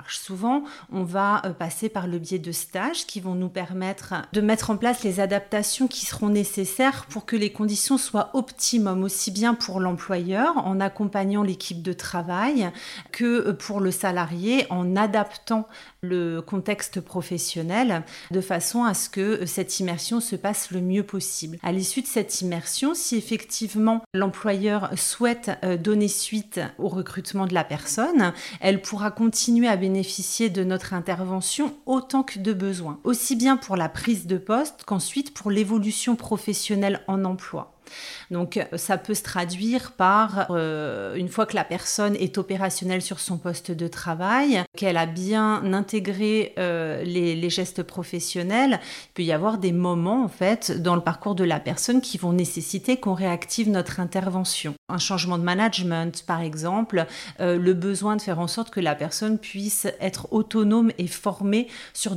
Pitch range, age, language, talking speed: 180-220 Hz, 40-59, French, 165 wpm